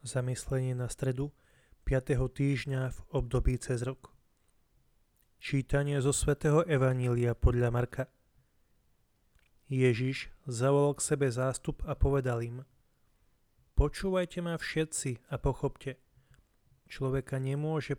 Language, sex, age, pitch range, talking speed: Slovak, male, 30-49, 130-150 Hz, 100 wpm